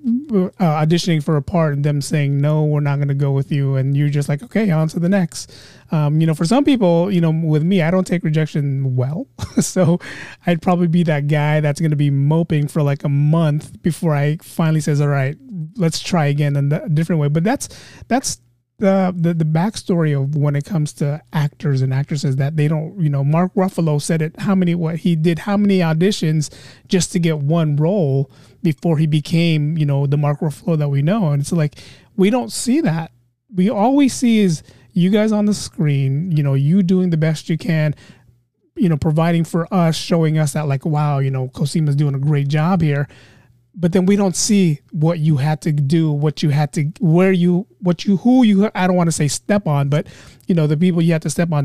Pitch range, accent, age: 145-180 Hz, American, 30-49